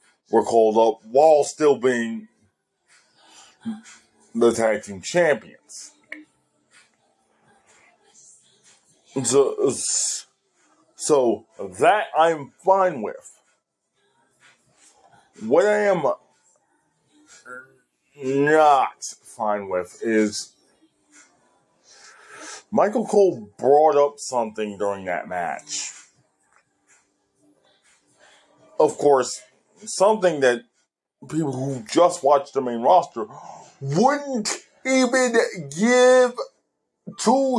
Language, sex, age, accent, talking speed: English, male, 20-39, American, 75 wpm